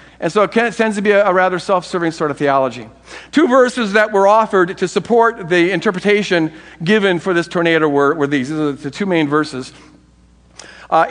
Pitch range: 175-235 Hz